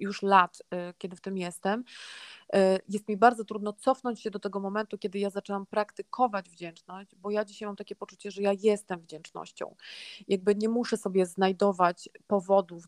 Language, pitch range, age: Polish, 190-220 Hz, 30-49